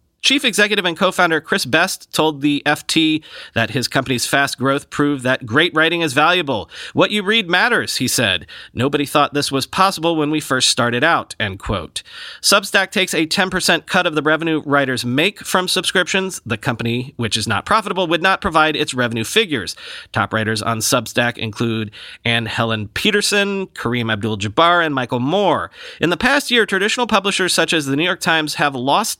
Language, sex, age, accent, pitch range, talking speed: English, male, 30-49, American, 125-180 Hz, 185 wpm